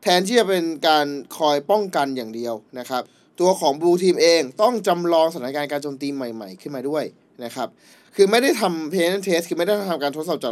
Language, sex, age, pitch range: Thai, male, 20-39, 140-185 Hz